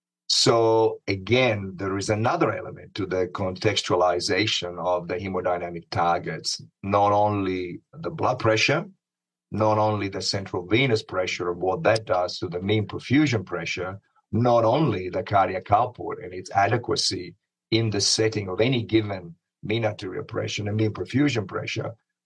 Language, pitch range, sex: English, 95-110 Hz, male